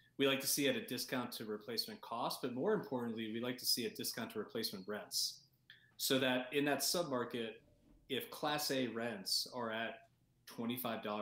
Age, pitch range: 30-49, 115-140 Hz